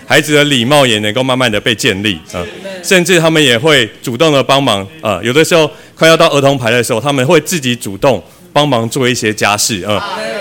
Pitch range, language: 115-155 Hz, Chinese